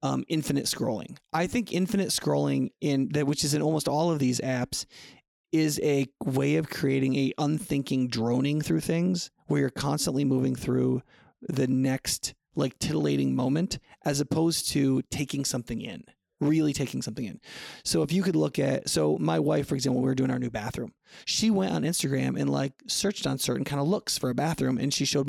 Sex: male